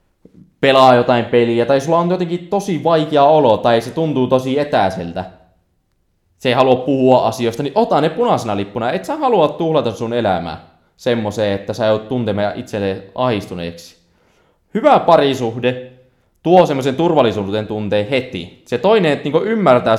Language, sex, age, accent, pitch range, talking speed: Finnish, male, 20-39, native, 95-135 Hz, 150 wpm